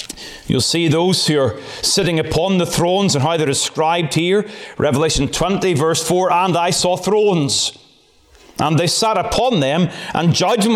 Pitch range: 170-215 Hz